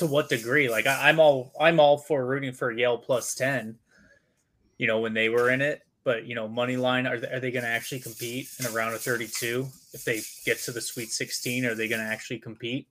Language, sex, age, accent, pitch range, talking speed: English, male, 20-39, American, 115-145 Hz, 245 wpm